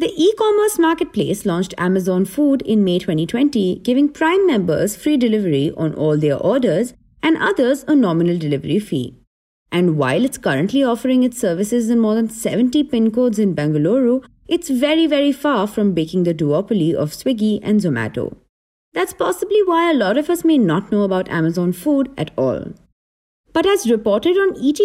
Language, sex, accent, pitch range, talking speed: English, female, Indian, 170-275 Hz, 170 wpm